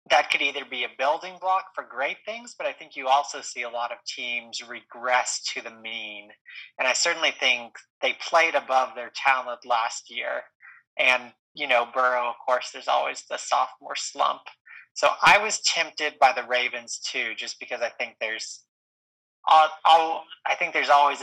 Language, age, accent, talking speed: English, 30-49, American, 185 wpm